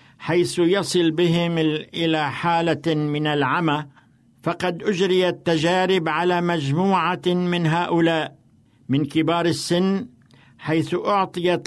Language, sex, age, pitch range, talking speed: Arabic, male, 60-79, 140-175 Hz, 100 wpm